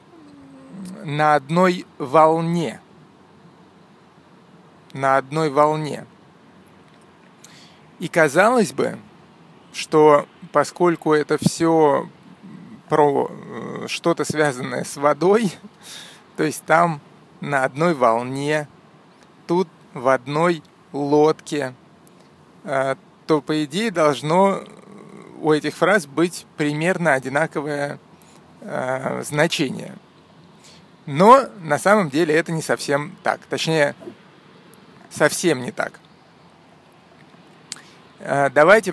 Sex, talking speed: male, 80 wpm